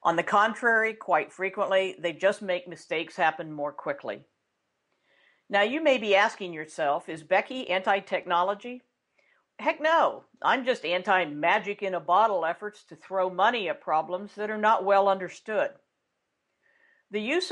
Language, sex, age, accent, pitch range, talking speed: English, female, 50-69, American, 175-225 Hz, 135 wpm